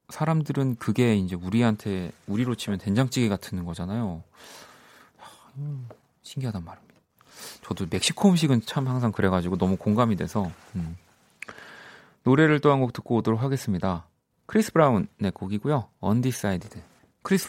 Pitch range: 90-125 Hz